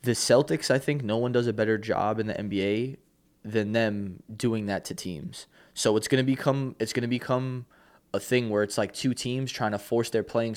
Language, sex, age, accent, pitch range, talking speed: English, male, 20-39, American, 100-125 Hz, 215 wpm